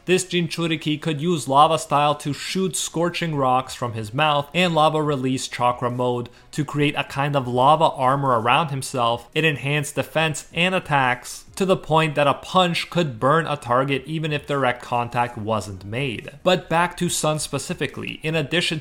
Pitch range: 130-160 Hz